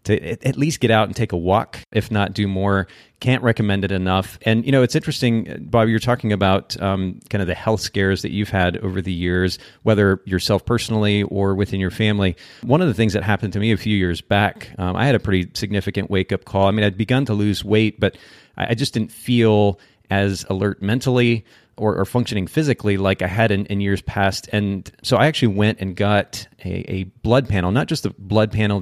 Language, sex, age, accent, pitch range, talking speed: English, male, 30-49, American, 95-115 Hz, 225 wpm